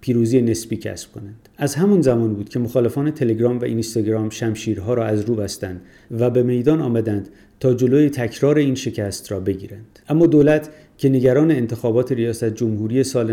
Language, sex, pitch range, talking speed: Persian, male, 110-130 Hz, 160 wpm